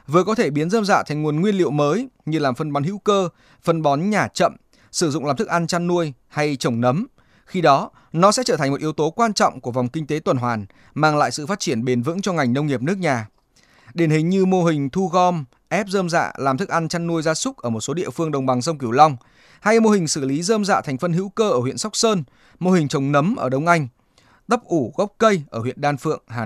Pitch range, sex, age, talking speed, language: 140-195 Hz, male, 20-39, 275 wpm, Vietnamese